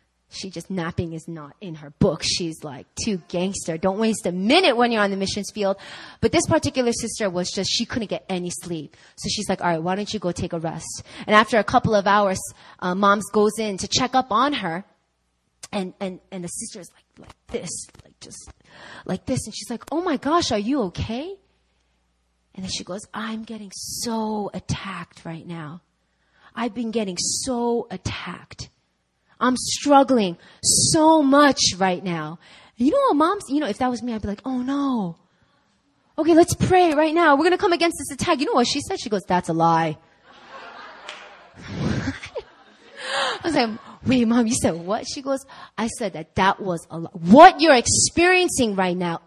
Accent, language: American, English